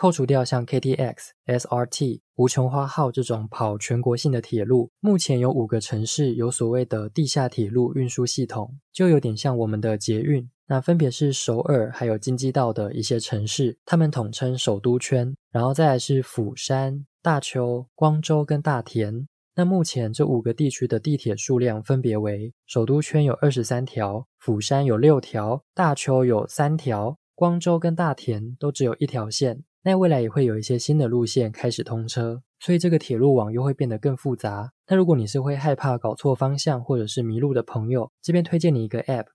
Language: Korean